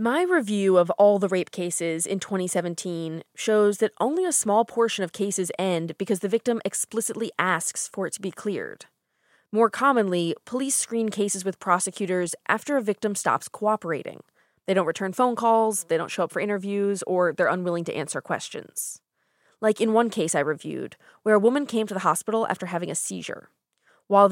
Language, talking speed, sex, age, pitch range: English, 185 wpm, female, 20-39, 180-225 Hz